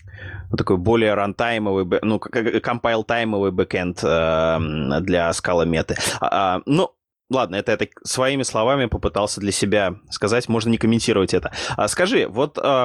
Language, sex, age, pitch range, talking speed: Russian, male, 20-39, 95-125 Hz, 115 wpm